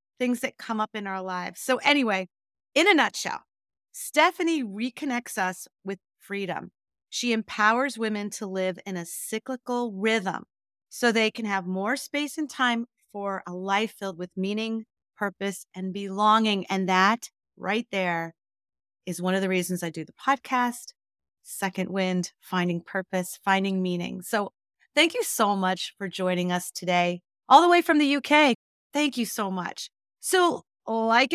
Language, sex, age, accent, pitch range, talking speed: English, female, 30-49, American, 185-235 Hz, 160 wpm